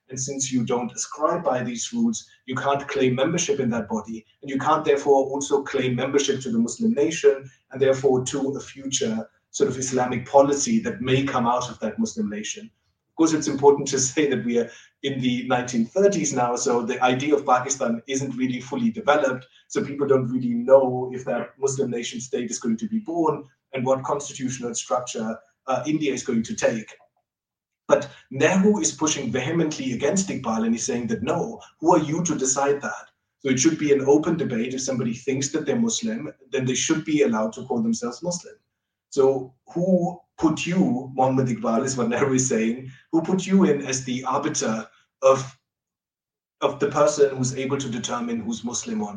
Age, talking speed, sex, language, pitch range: 30-49, 195 wpm, male, English, 125-160 Hz